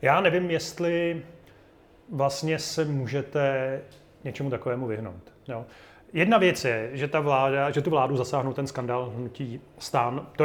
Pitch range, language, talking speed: 130-150 Hz, Slovak, 145 wpm